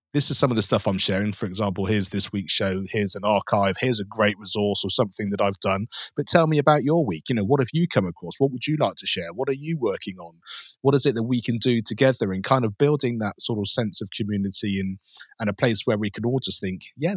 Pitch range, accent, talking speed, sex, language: 105-135 Hz, British, 275 wpm, male, English